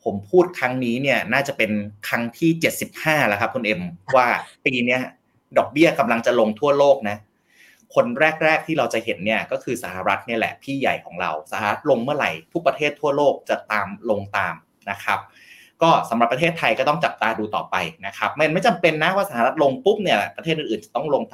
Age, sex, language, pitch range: 30-49, male, Thai, 115-175 Hz